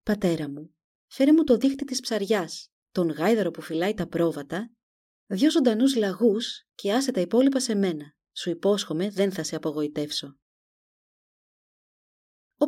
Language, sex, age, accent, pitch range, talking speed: Greek, female, 30-49, native, 170-250 Hz, 140 wpm